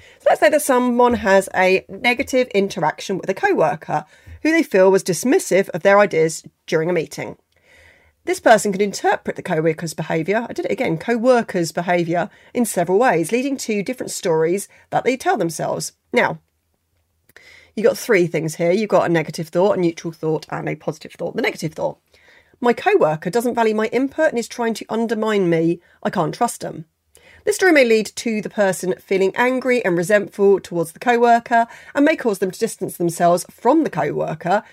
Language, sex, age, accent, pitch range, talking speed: English, female, 30-49, British, 170-235 Hz, 185 wpm